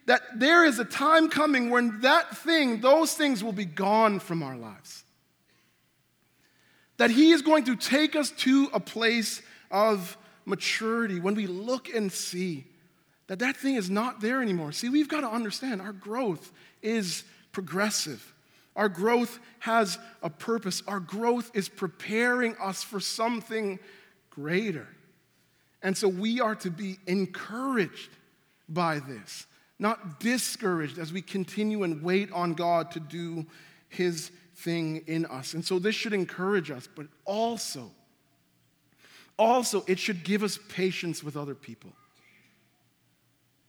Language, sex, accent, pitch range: English, male, American, 170-230 Hz